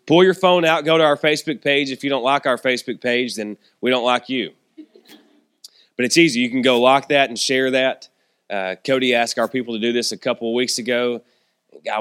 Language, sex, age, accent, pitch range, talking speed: English, male, 20-39, American, 120-150 Hz, 230 wpm